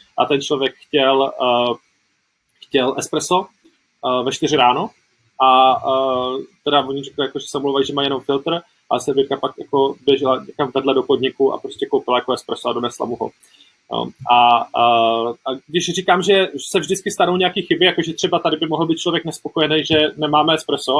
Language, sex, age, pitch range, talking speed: Czech, male, 20-39, 145-180 Hz, 180 wpm